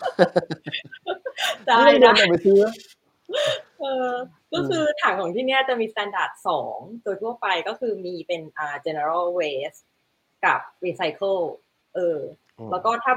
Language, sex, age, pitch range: Thai, female, 20-39, 160-230 Hz